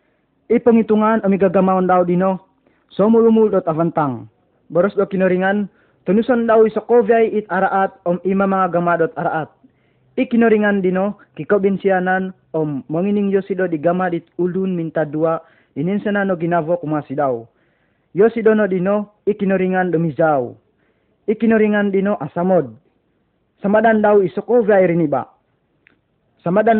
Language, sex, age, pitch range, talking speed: Malay, male, 20-39, 165-200 Hz, 110 wpm